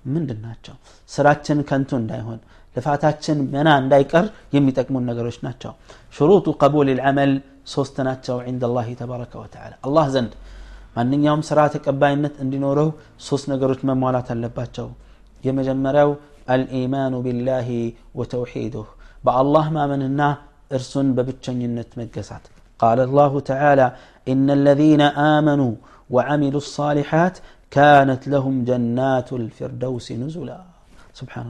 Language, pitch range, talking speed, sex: Amharic, 130-150 Hz, 105 wpm, male